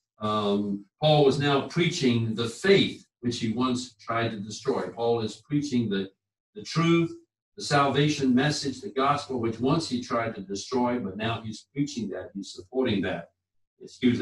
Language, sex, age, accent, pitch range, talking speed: English, male, 60-79, American, 105-130 Hz, 165 wpm